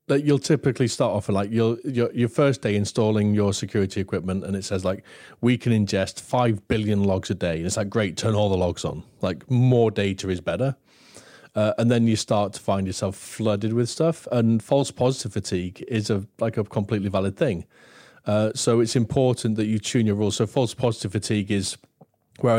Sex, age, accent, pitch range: male, 40-59, British, 100-120 Hz